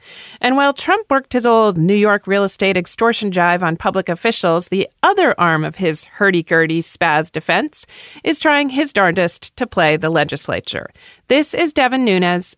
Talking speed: 165 wpm